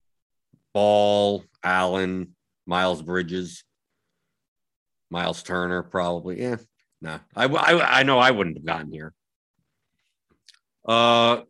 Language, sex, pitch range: English, male, 100-135 Hz